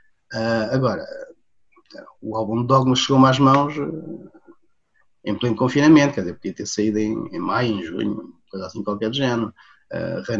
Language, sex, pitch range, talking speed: Portuguese, male, 120-145 Hz, 155 wpm